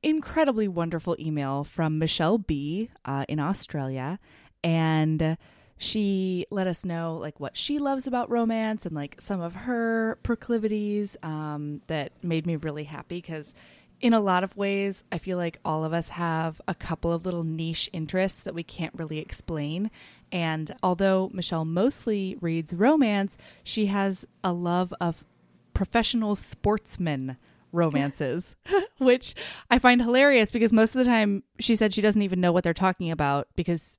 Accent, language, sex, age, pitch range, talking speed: American, English, female, 20-39, 160-205 Hz, 160 wpm